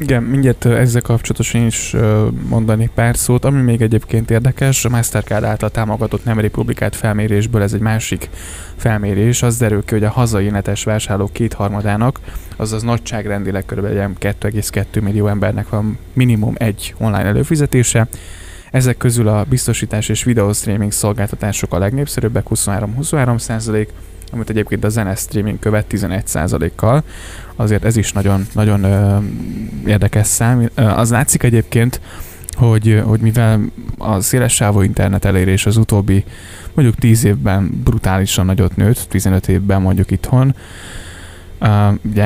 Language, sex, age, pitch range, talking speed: Hungarian, male, 10-29, 100-115 Hz, 130 wpm